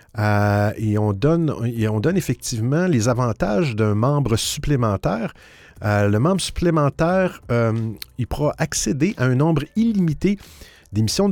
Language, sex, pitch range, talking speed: French, male, 110-150 Hz, 140 wpm